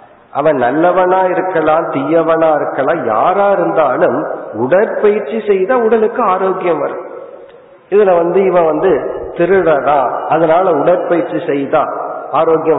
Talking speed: 100 wpm